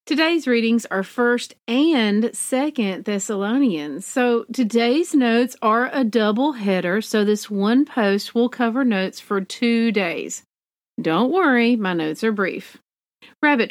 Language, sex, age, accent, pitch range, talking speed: English, female, 40-59, American, 195-265 Hz, 135 wpm